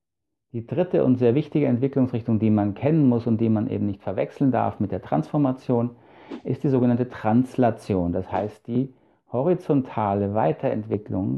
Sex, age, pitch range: male, 50-69, 110-130 Hz